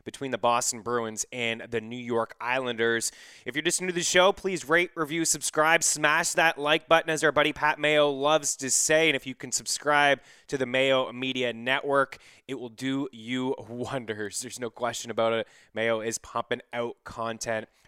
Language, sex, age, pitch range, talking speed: English, male, 20-39, 115-145 Hz, 190 wpm